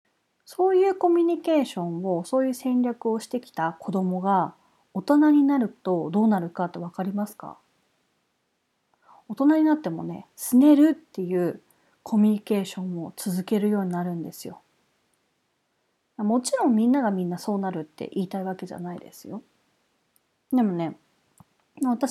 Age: 40-59